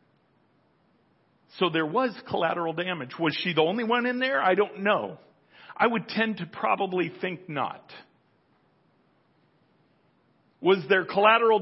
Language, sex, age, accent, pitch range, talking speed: English, male, 40-59, American, 130-200 Hz, 130 wpm